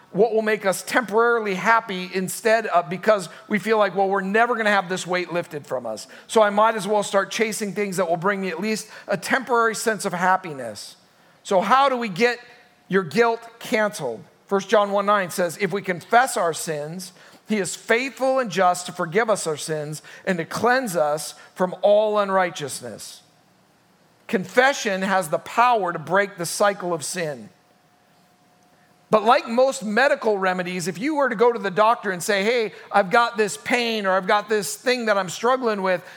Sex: male